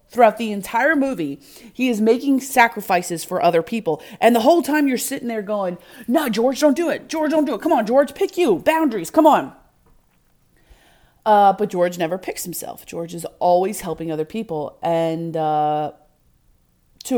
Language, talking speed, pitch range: English, 180 wpm, 165-230 Hz